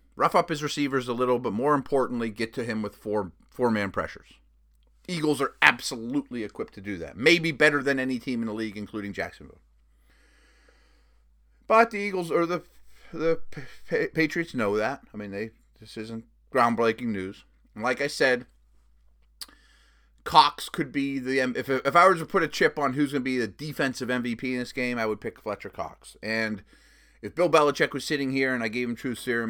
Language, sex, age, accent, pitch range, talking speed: English, male, 30-49, American, 105-140 Hz, 190 wpm